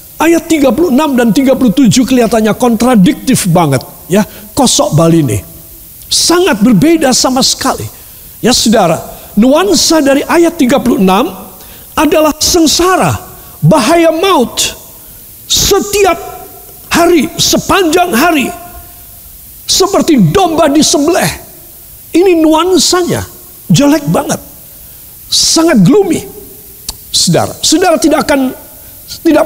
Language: Indonesian